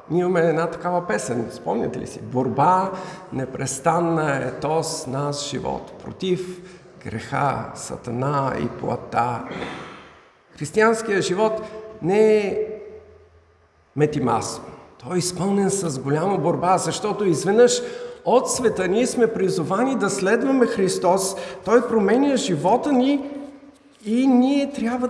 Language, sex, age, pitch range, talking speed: Bulgarian, male, 50-69, 175-240 Hz, 110 wpm